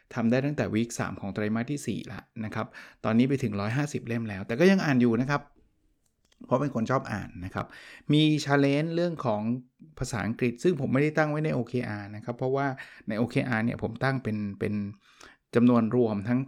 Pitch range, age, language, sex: 110-135 Hz, 20-39, Thai, male